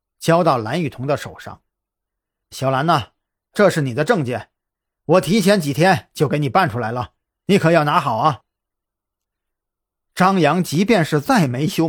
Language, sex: Chinese, male